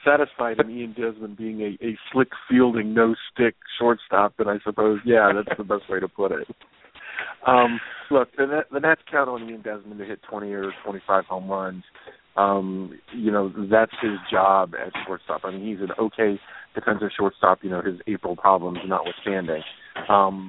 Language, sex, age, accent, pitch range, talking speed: English, male, 40-59, American, 95-110 Hz, 175 wpm